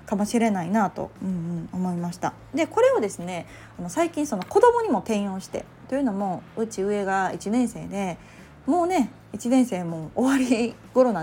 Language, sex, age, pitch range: Japanese, female, 20-39, 180-260 Hz